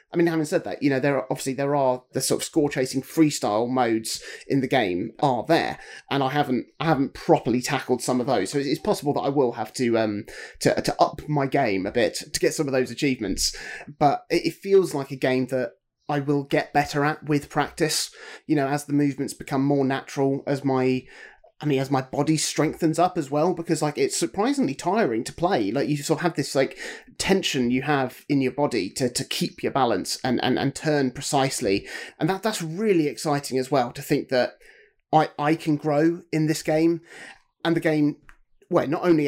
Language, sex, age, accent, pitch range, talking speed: English, male, 30-49, British, 135-160 Hz, 215 wpm